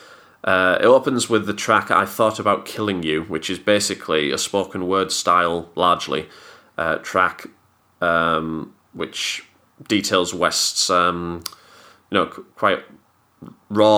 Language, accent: English, British